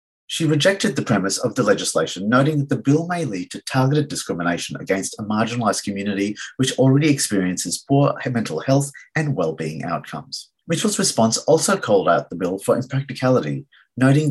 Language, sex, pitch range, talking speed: English, male, 100-150 Hz, 165 wpm